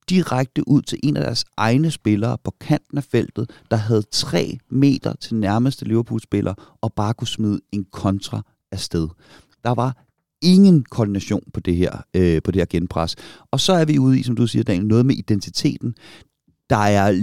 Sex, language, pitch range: male, Danish, 95-125 Hz